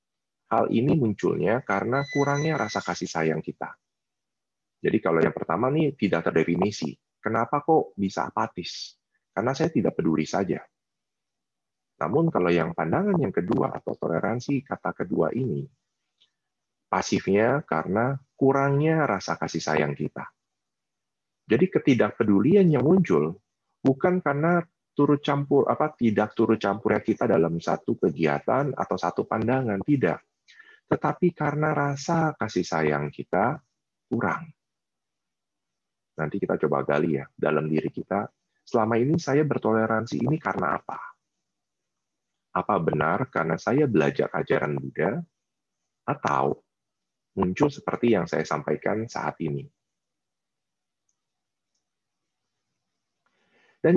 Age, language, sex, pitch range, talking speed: 30-49, Indonesian, male, 85-145 Hz, 110 wpm